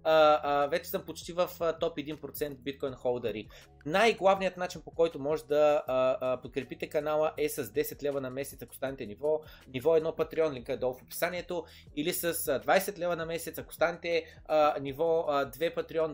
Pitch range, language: 140-180 Hz, Bulgarian